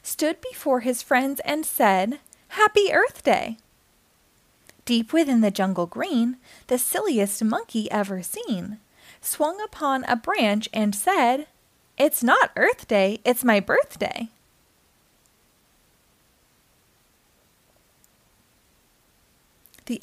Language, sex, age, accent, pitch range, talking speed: English, female, 20-39, American, 220-315 Hz, 100 wpm